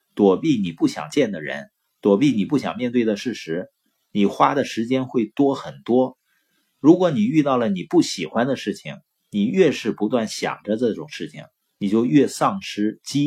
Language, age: Chinese, 50-69